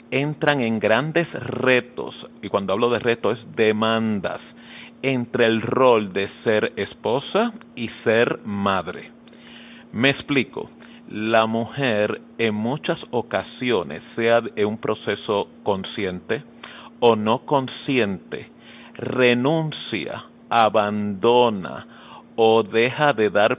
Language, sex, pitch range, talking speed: Spanish, male, 100-120 Hz, 105 wpm